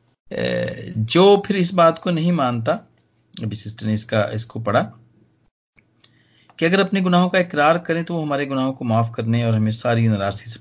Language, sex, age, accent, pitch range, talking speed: Hindi, male, 40-59, native, 105-145 Hz, 180 wpm